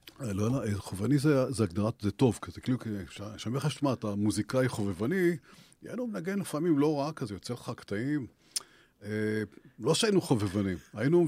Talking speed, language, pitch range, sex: 150 wpm, English, 105-145 Hz, male